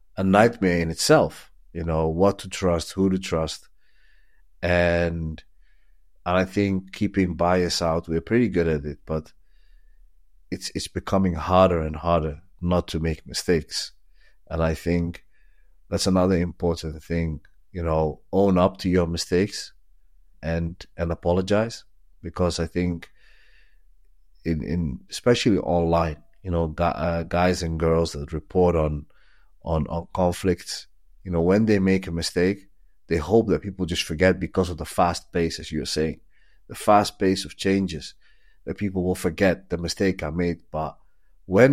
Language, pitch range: English, 80-95 Hz